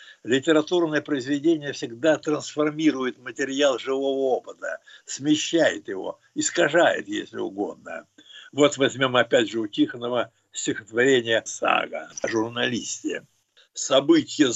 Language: Russian